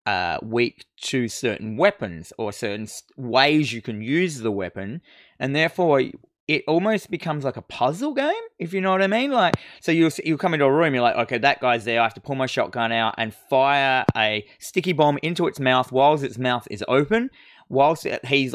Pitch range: 115-145 Hz